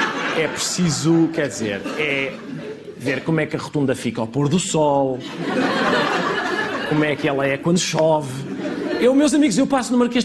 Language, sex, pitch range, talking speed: Portuguese, male, 160-255 Hz, 175 wpm